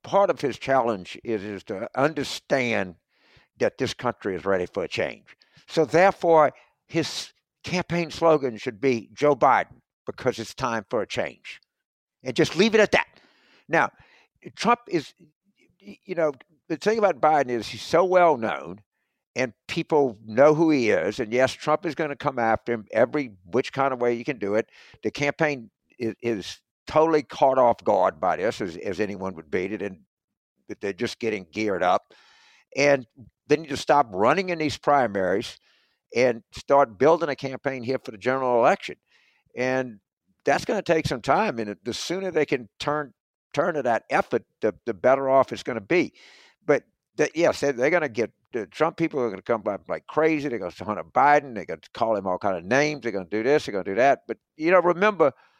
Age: 60-79